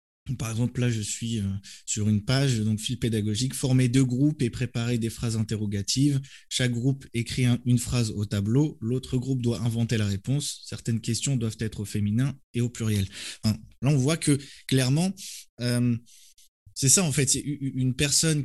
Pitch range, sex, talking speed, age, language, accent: 110-135 Hz, male, 175 wpm, 20-39, French, French